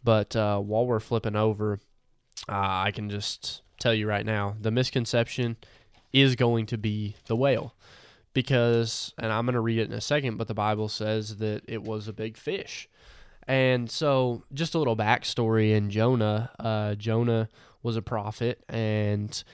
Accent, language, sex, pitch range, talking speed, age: American, English, male, 110-125 Hz, 170 wpm, 10-29